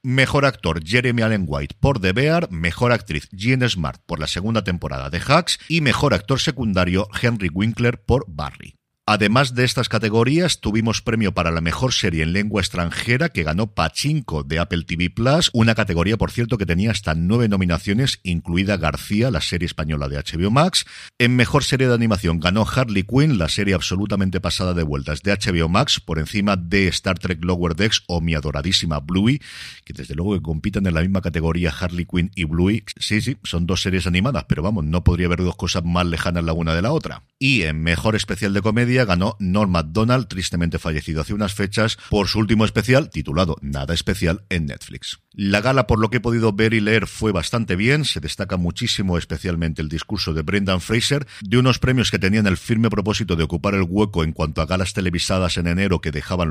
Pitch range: 85-115 Hz